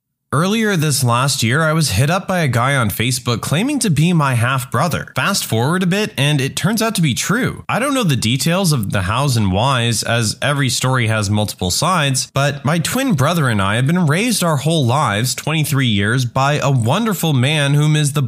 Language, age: English, 20-39